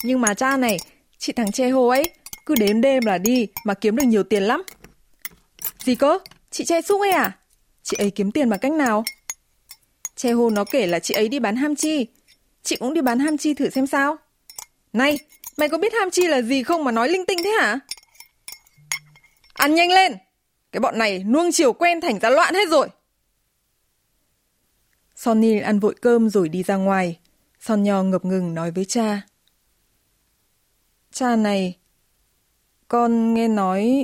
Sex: female